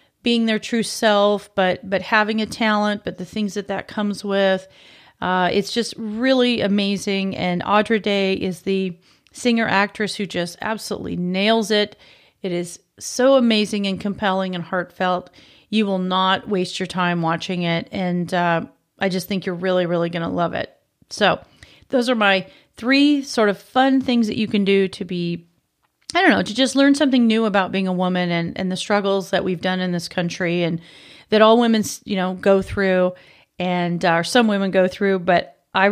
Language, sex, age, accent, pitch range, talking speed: English, female, 40-59, American, 185-225 Hz, 190 wpm